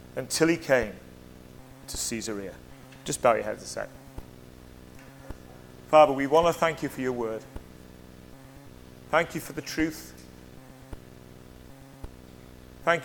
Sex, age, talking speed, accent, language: male, 30-49, 120 wpm, British, English